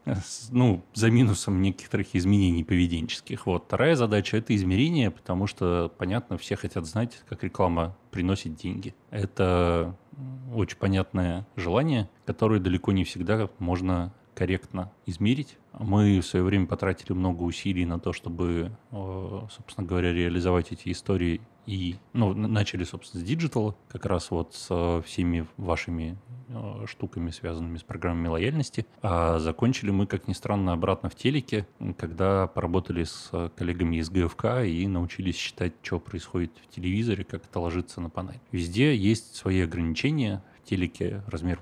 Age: 20-39